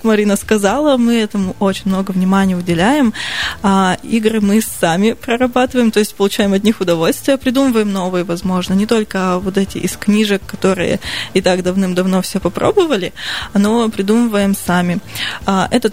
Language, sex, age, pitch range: Russian, female, 20-39, 185-225 Hz